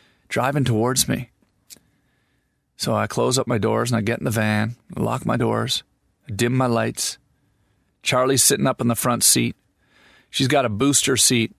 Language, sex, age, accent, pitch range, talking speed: English, male, 40-59, American, 115-135 Hz, 180 wpm